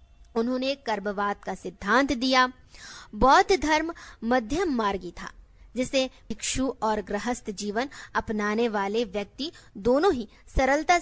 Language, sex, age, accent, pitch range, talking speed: Hindi, female, 20-39, native, 210-275 Hz, 115 wpm